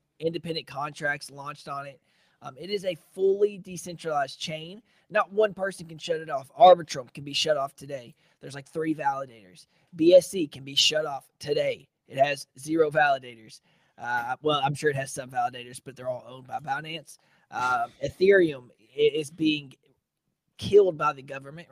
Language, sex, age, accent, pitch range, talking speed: English, male, 20-39, American, 140-170 Hz, 165 wpm